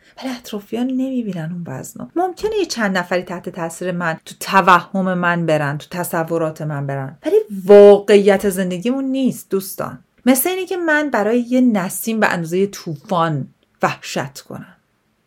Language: Persian